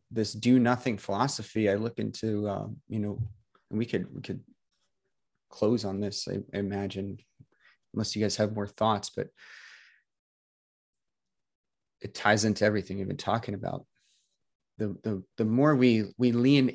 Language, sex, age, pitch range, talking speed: English, male, 30-49, 100-120 Hz, 155 wpm